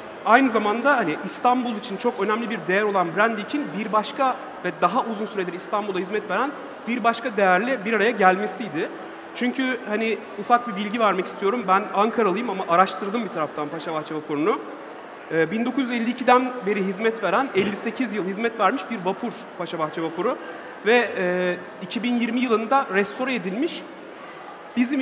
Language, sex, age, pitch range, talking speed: Turkish, male, 40-59, 185-240 Hz, 145 wpm